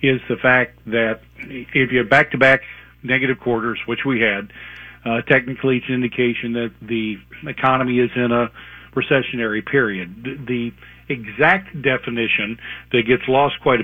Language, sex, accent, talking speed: English, male, American, 145 wpm